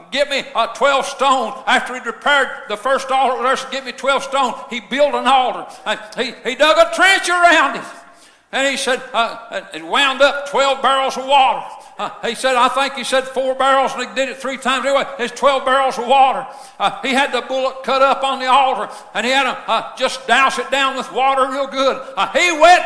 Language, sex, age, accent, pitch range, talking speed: English, male, 60-79, American, 260-310 Hz, 230 wpm